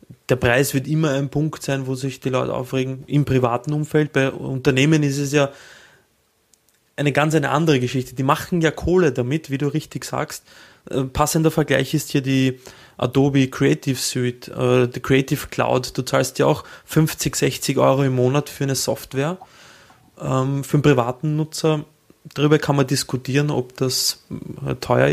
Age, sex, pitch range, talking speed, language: 20-39, male, 125-145 Hz, 170 wpm, German